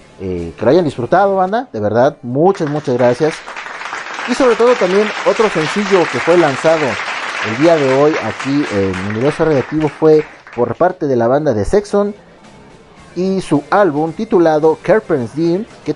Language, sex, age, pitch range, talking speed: Spanish, male, 30-49, 105-160 Hz, 170 wpm